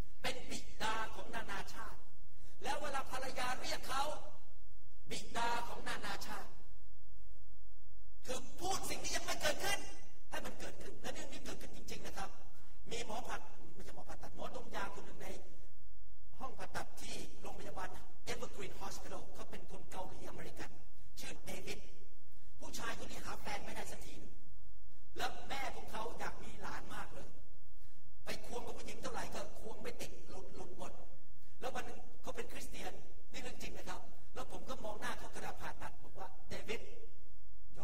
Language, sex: Thai, male